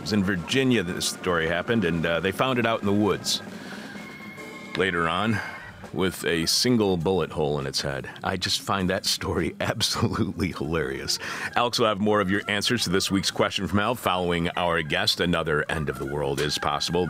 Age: 40-59